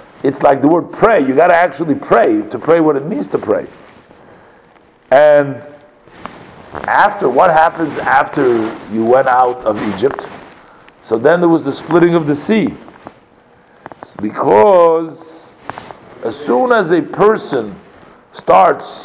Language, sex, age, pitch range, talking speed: English, male, 50-69, 145-195 Hz, 135 wpm